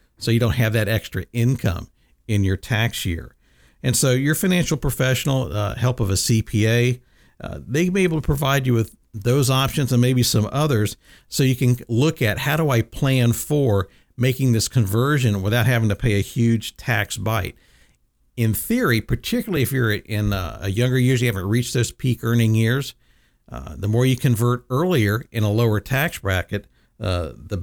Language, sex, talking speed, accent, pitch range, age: English, male, 185 wpm, American, 105-130 Hz, 50-69